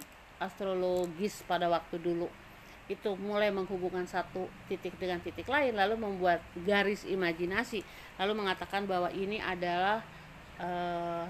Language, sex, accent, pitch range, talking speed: Indonesian, female, native, 175-220 Hz, 115 wpm